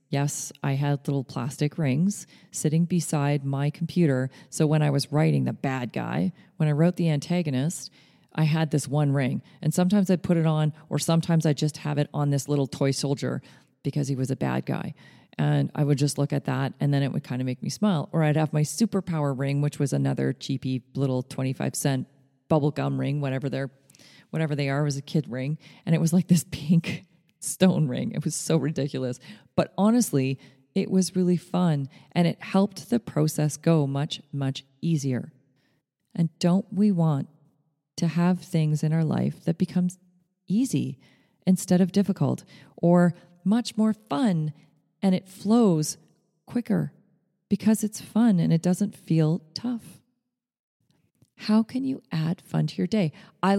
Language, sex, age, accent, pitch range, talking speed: English, female, 40-59, American, 140-185 Hz, 175 wpm